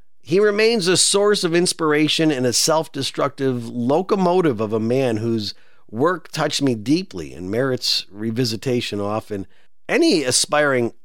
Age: 50-69